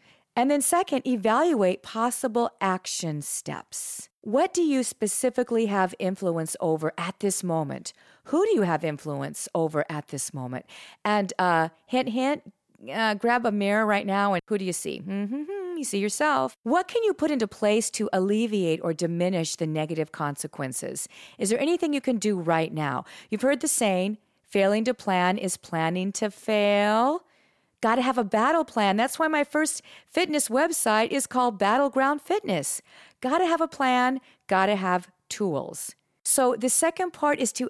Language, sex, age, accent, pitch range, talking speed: English, female, 40-59, American, 180-260 Hz, 175 wpm